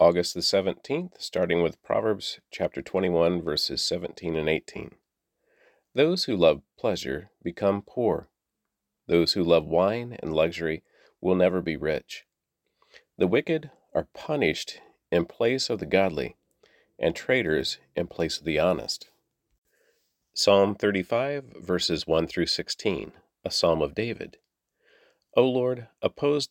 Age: 40-59